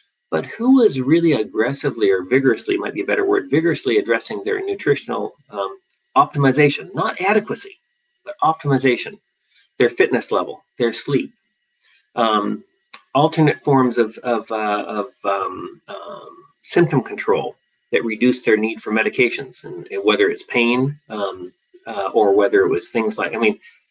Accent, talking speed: American, 145 wpm